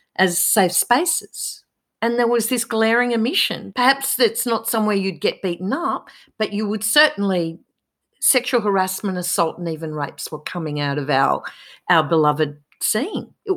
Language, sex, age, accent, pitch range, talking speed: English, female, 50-69, Australian, 170-225 Hz, 160 wpm